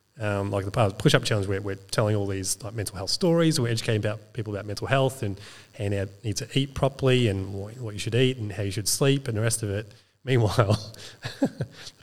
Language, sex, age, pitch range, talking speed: English, male, 30-49, 105-130 Hz, 215 wpm